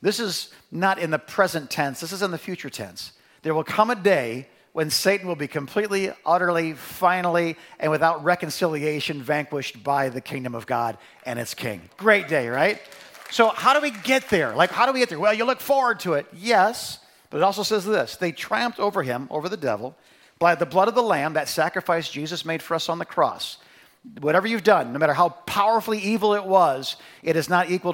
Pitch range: 130-185 Hz